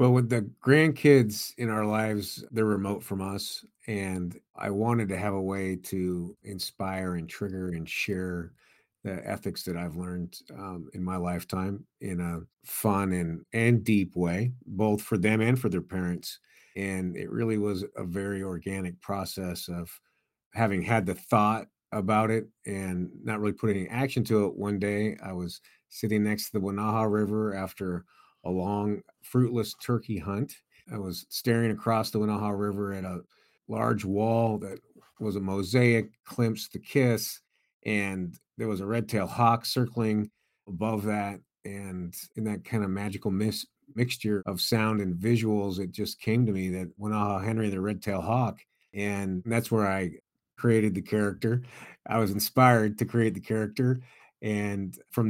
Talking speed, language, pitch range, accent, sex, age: 165 wpm, English, 95-110 Hz, American, male, 50-69